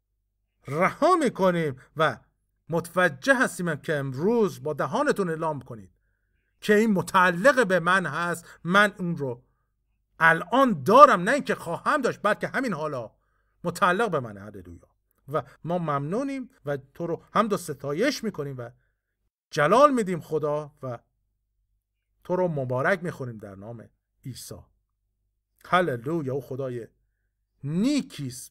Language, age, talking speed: Persian, 50-69, 125 wpm